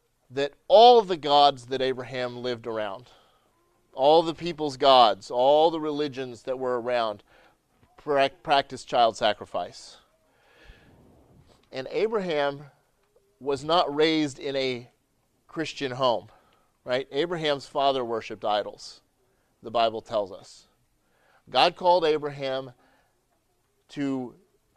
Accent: American